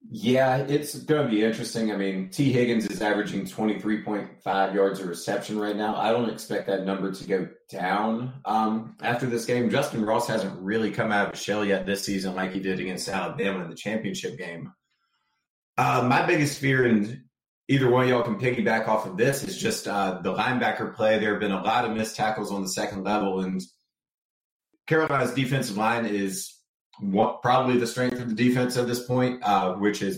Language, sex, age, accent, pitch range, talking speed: English, male, 30-49, American, 100-125 Hz, 200 wpm